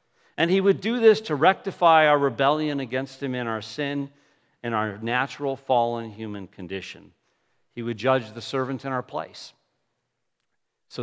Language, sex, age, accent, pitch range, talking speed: English, male, 50-69, American, 120-160 Hz, 160 wpm